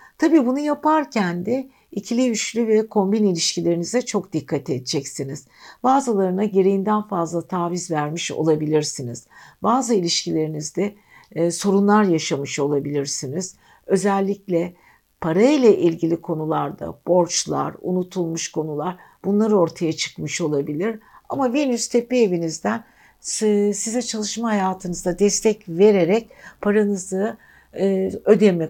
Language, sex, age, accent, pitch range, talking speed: Turkish, female, 60-79, native, 170-215 Hz, 100 wpm